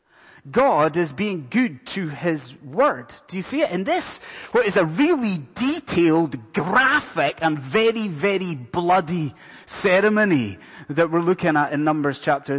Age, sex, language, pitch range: 30-49, male, English, 140-200 Hz